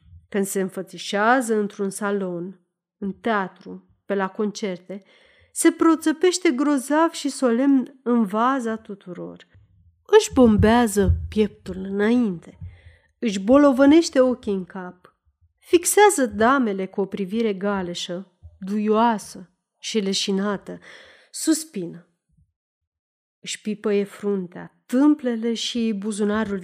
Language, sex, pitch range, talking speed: Romanian, female, 185-260 Hz, 100 wpm